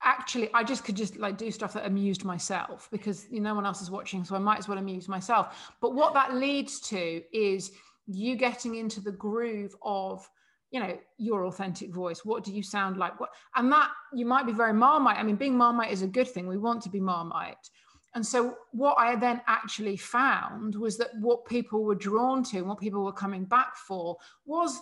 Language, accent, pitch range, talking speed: English, British, 190-235 Hz, 220 wpm